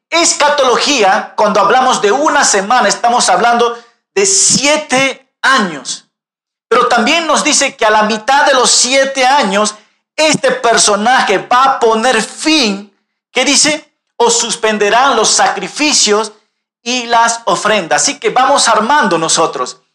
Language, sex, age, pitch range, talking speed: Spanish, male, 50-69, 205-265 Hz, 130 wpm